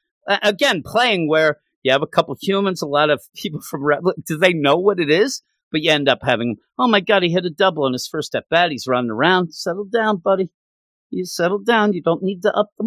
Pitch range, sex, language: 145-205 Hz, male, English